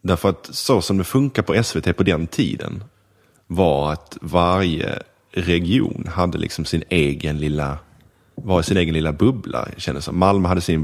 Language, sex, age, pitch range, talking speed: English, male, 30-49, 80-105 Hz, 160 wpm